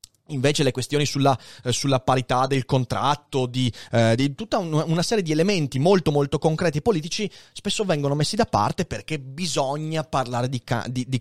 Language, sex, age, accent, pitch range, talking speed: Italian, male, 30-49, native, 135-205 Hz, 180 wpm